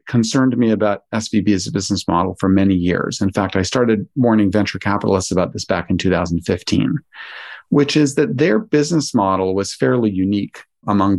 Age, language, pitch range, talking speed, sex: 40-59, English, 100-130 Hz, 175 wpm, male